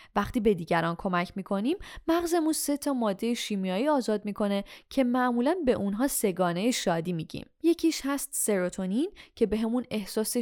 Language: Persian